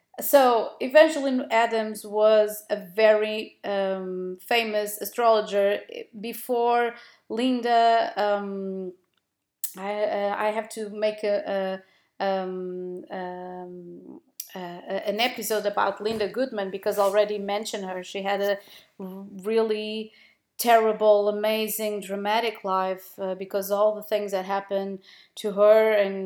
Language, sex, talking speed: Portuguese, female, 110 wpm